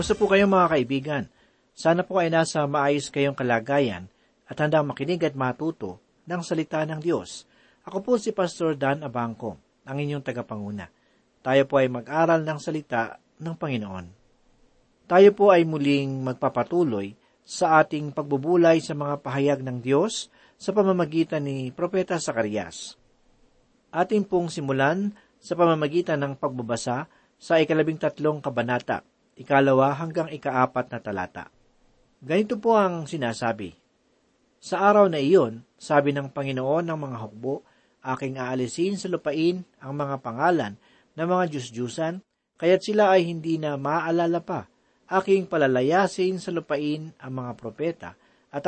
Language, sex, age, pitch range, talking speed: Filipino, male, 40-59, 130-175 Hz, 140 wpm